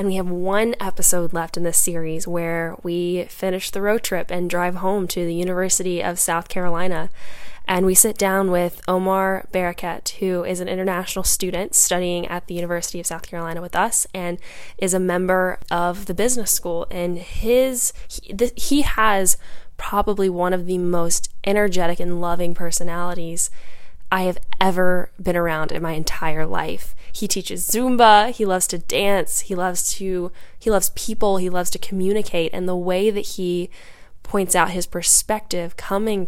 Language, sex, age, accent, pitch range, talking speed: English, female, 10-29, American, 170-190 Hz, 170 wpm